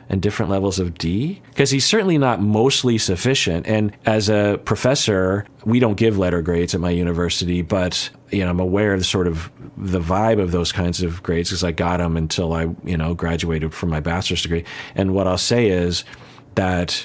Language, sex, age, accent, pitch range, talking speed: English, male, 40-59, American, 90-115 Hz, 220 wpm